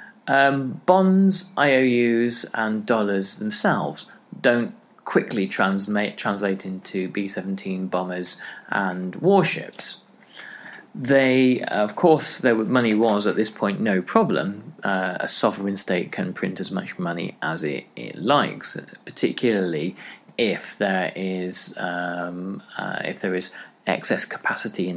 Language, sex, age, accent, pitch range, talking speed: English, male, 30-49, British, 95-140 Hz, 125 wpm